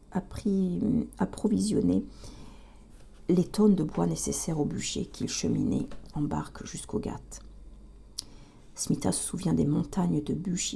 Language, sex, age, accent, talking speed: French, female, 50-69, French, 125 wpm